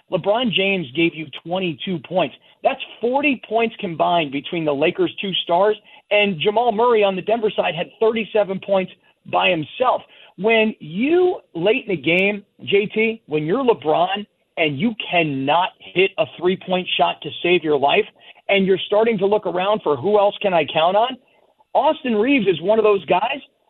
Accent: American